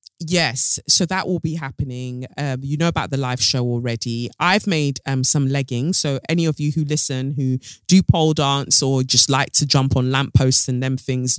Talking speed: 205 wpm